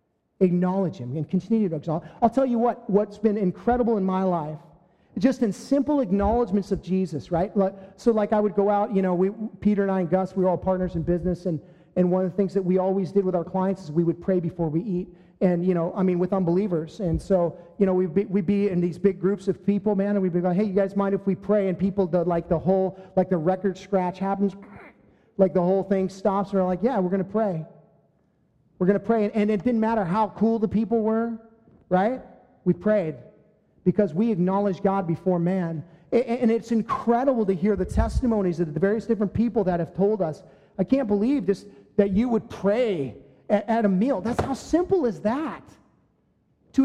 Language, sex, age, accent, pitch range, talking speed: English, male, 40-59, American, 185-220 Hz, 225 wpm